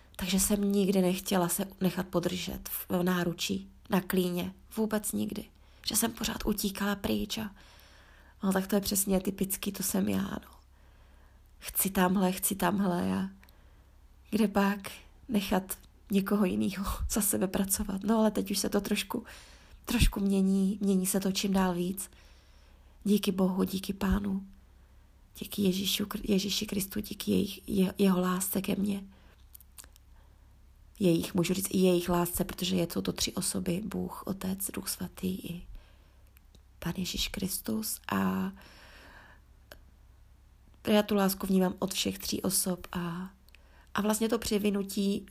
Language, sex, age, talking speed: Czech, female, 20-39, 140 wpm